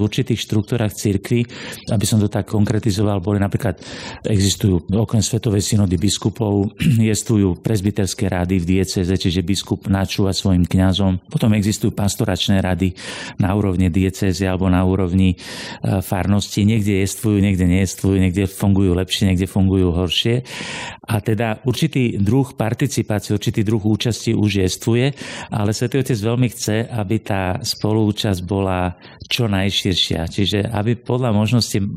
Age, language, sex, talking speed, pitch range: 50-69, Slovak, male, 135 wpm, 95-115 Hz